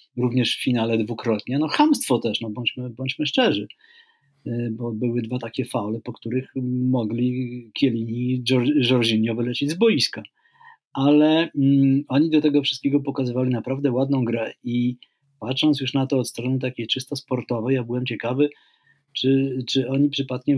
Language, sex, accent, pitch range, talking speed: Polish, male, native, 120-145 Hz, 155 wpm